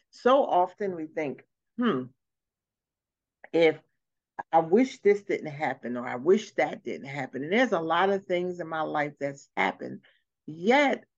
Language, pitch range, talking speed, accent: English, 170-245 Hz, 155 wpm, American